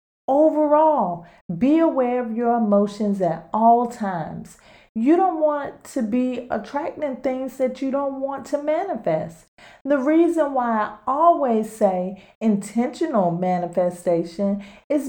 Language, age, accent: English, 40-59, American